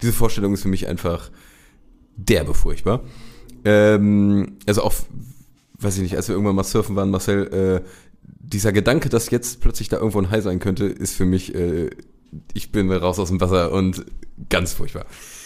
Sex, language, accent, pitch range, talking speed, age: male, German, German, 95-125 Hz, 180 wpm, 30-49